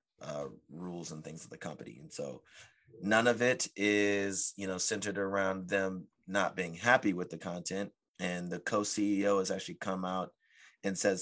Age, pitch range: 30-49, 90-100 Hz